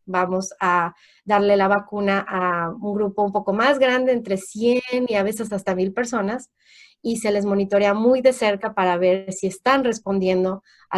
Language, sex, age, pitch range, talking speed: Spanish, female, 30-49, 185-225 Hz, 180 wpm